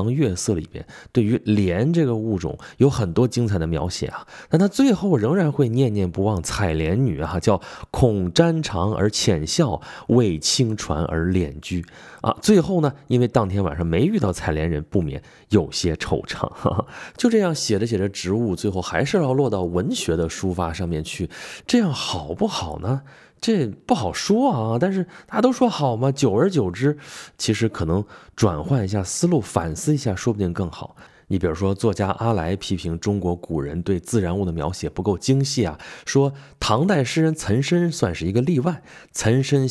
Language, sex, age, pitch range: Chinese, male, 20-39, 90-140 Hz